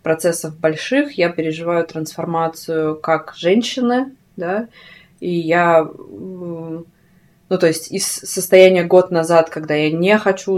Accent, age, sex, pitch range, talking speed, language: native, 20-39, female, 165-195 Hz, 120 wpm, Russian